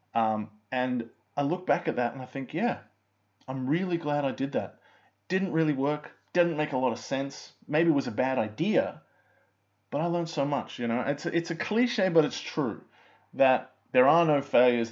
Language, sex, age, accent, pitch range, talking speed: English, male, 20-39, Australian, 115-145 Hz, 210 wpm